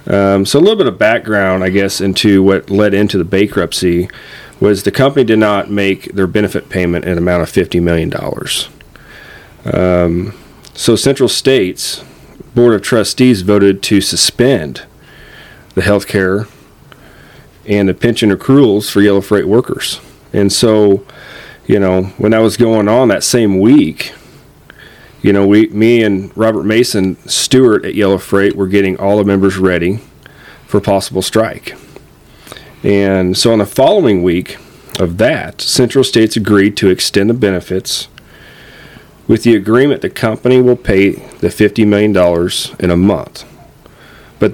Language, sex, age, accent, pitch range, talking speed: English, male, 40-59, American, 95-110 Hz, 150 wpm